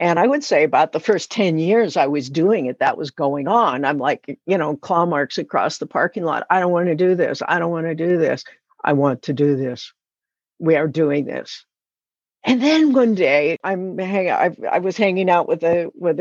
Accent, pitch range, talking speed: American, 155-185 Hz, 225 wpm